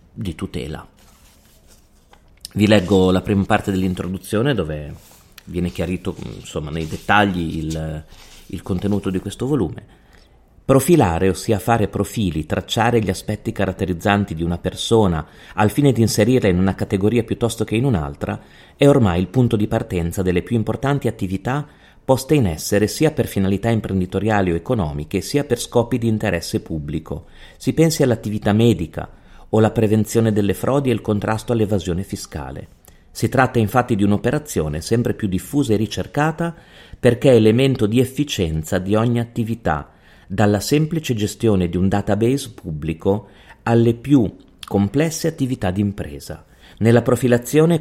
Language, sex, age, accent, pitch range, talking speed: Italian, male, 30-49, native, 95-120 Hz, 145 wpm